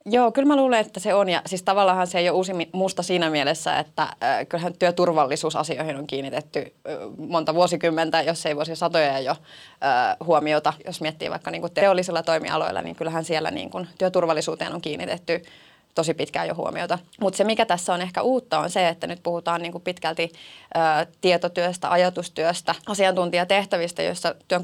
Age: 20-39